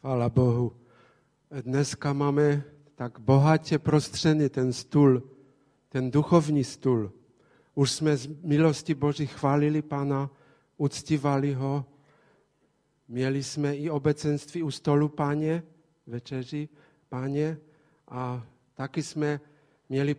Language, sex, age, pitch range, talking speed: Czech, male, 50-69, 135-165 Hz, 100 wpm